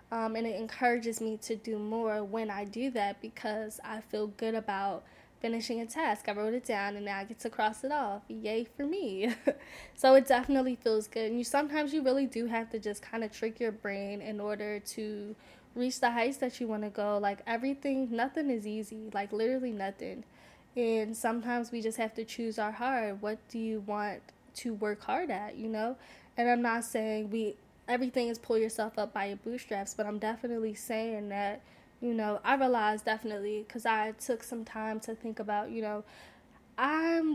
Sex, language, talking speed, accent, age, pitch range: female, English, 200 wpm, American, 10-29, 210-245 Hz